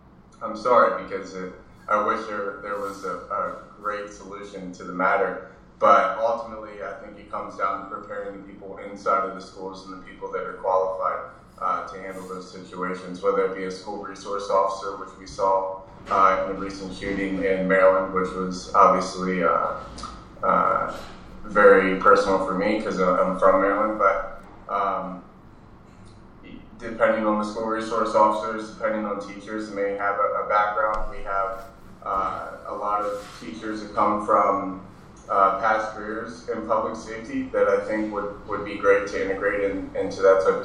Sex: male